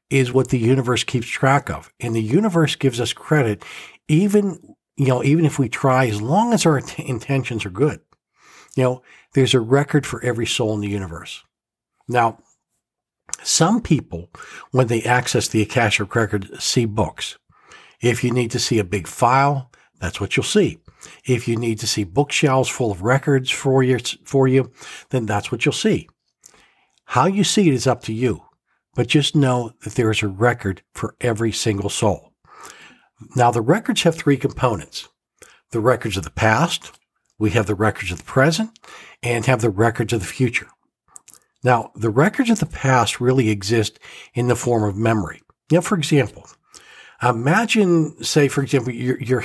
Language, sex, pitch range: English, male, 110-140 Hz